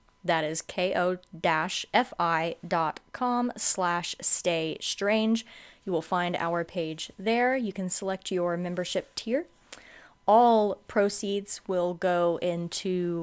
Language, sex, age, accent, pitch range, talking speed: English, female, 20-39, American, 170-205 Hz, 110 wpm